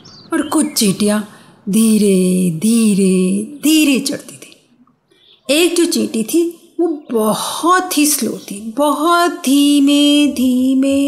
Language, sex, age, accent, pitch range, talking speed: Hindi, female, 50-69, native, 230-305 Hz, 110 wpm